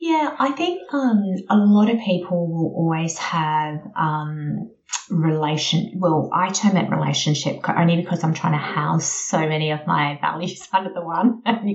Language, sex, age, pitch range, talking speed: English, female, 30-49, 150-185 Hz, 170 wpm